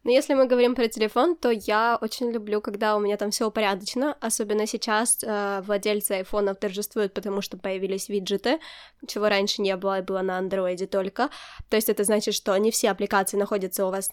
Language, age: Ukrainian, 10-29